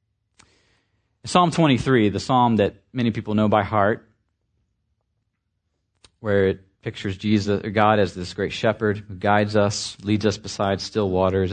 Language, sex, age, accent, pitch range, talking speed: English, male, 40-59, American, 95-115 Hz, 145 wpm